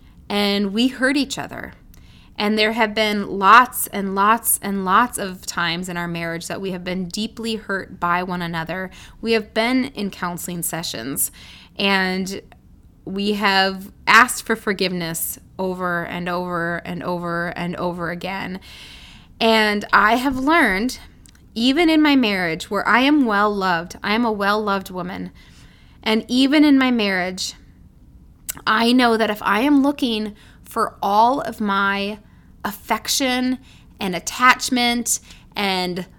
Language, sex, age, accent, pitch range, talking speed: English, female, 20-39, American, 185-255 Hz, 140 wpm